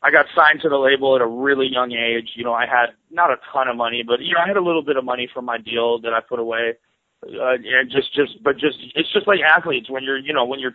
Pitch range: 120-140 Hz